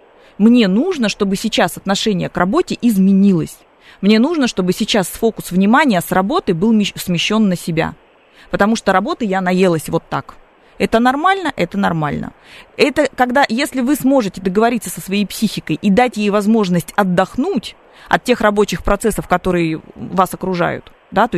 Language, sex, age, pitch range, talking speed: Russian, female, 20-39, 175-230 Hz, 150 wpm